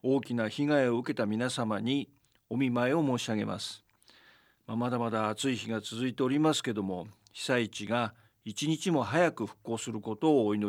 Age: 50-69